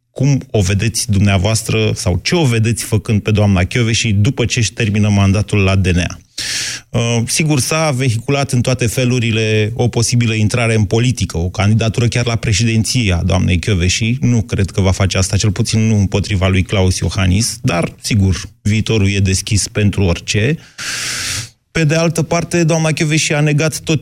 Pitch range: 100-120 Hz